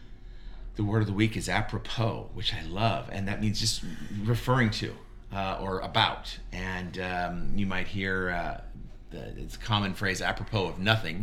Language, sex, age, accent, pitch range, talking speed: English, male, 50-69, American, 100-115 Hz, 175 wpm